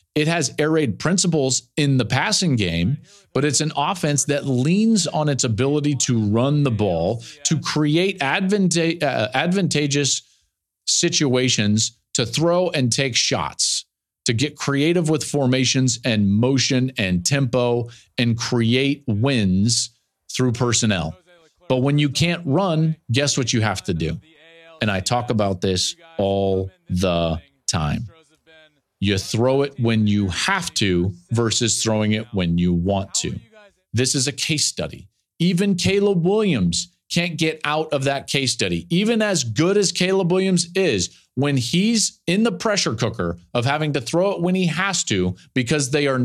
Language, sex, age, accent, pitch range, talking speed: English, male, 40-59, American, 110-160 Hz, 155 wpm